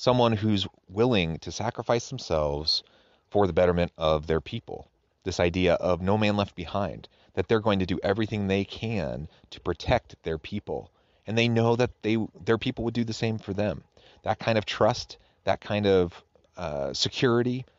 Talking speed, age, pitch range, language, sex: 180 wpm, 30-49, 90-110 Hz, English, male